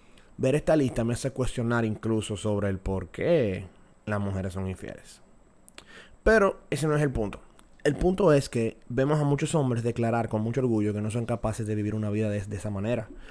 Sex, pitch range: male, 105-135 Hz